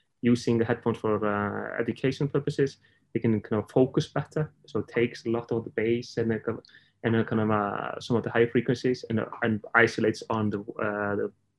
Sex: male